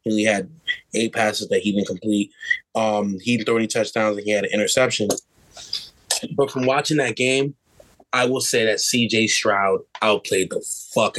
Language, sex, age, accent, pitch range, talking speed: English, male, 20-39, American, 110-135 Hz, 180 wpm